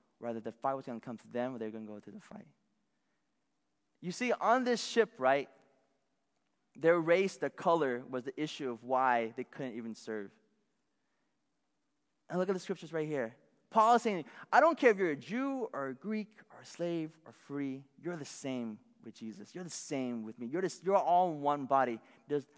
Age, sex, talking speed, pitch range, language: 20-39, male, 215 wpm, 120-165 Hz, English